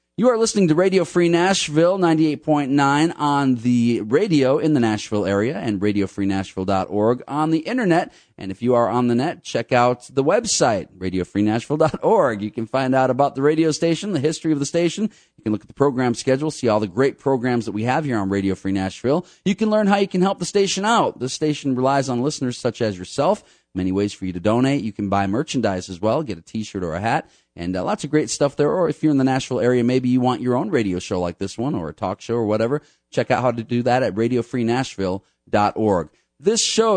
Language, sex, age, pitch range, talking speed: English, male, 40-59, 100-145 Hz, 230 wpm